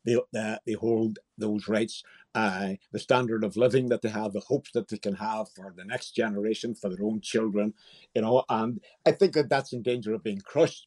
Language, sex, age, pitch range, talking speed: English, male, 60-79, 115-165 Hz, 220 wpm